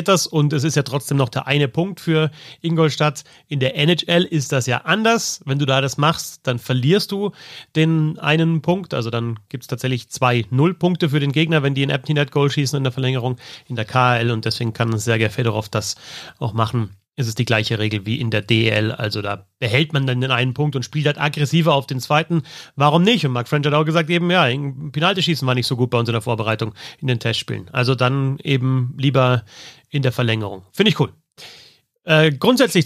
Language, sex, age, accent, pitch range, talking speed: German, male, 30-49, German, 120-155 Hz, 215 wpm